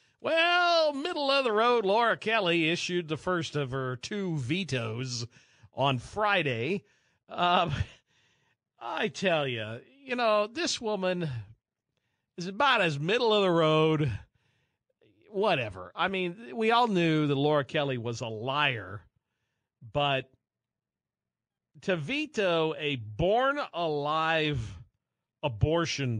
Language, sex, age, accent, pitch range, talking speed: English, male, 50-69, American, 130-185 Hz, 110 wpm